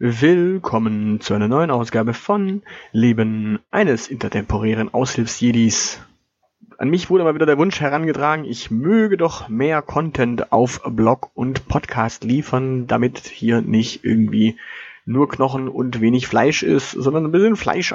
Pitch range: 115-155 Hz